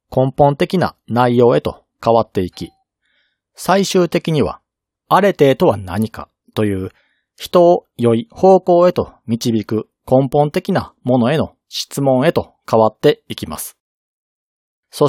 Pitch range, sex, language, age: 115-165 Hz, male, Japanese, 40-59